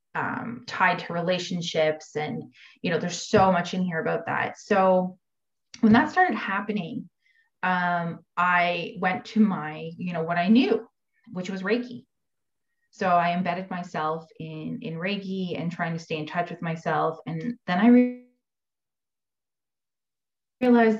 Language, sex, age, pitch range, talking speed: English, female, 20-39, 165-220 Hz, 145 wpm